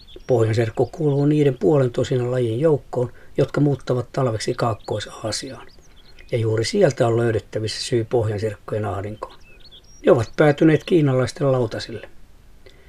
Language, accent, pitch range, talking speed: Finnish, native, 115-135 Hz, 110 wpm